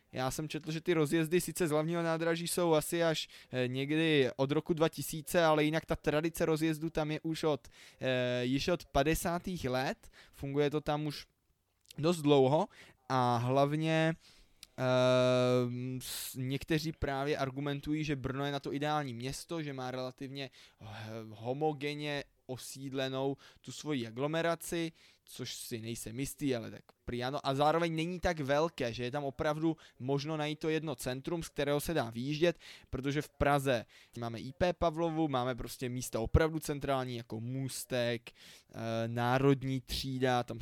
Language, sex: Czech, male